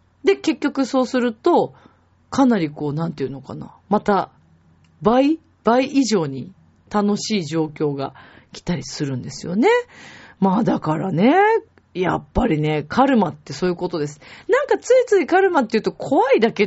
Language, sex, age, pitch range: Japanese, female, 40-59, 160-260 Hz